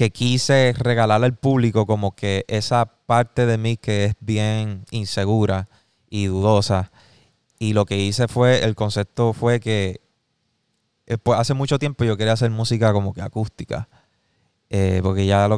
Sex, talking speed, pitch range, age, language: male, 155 wpm, 100-120 Hz, 20-39, English